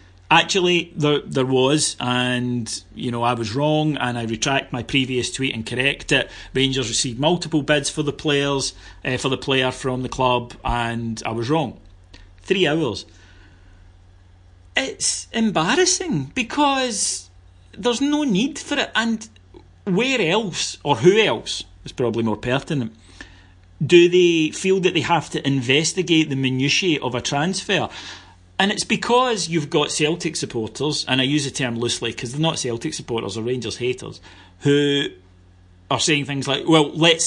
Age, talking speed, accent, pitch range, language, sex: 40-59, 160 wpm, British, 120-175 Hz, English, male